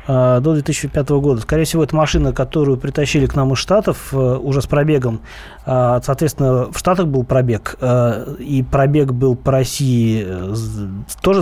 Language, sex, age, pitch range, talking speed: Russian, male, 20-39, 130-160 Hz, 140 wpm